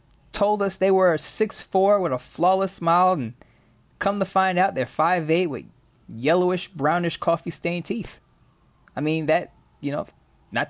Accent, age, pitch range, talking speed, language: American, 20-39, 140-185 Hz, 165 wpm, English